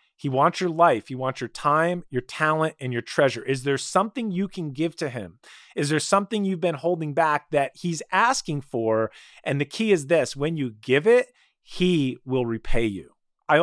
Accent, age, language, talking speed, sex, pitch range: American, 30-49, English, 205 wpm, male, 130-175 Hz